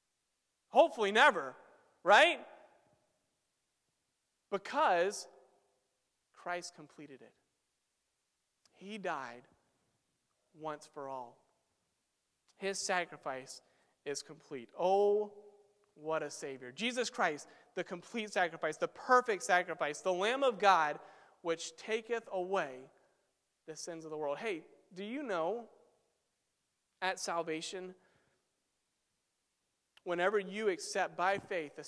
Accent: American